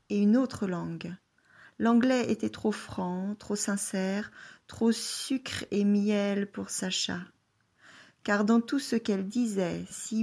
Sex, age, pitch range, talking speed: female, 40-59, 195-235 Hz, 135 wpm